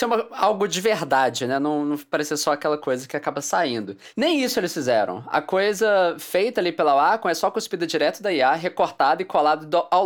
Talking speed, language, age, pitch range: 195 wpm, English, 20-39, 145-190 Hz